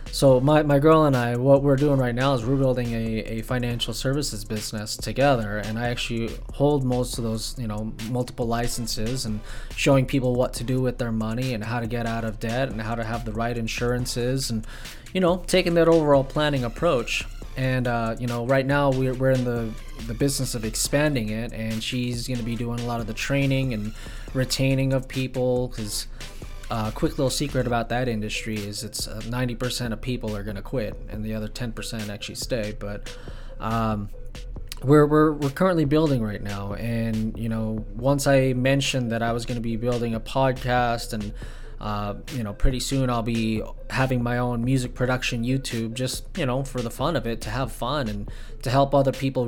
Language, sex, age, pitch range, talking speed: English, male, 20-39, 115-135 Hz, 205 wpm